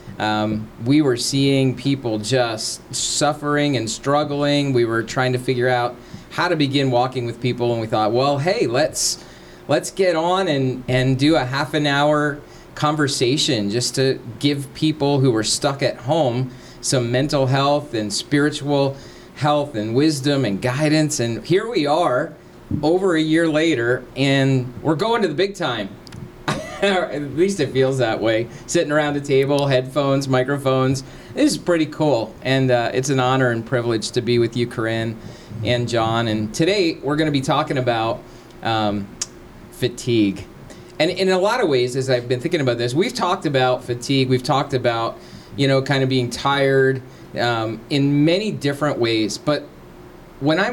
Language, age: English, 30-49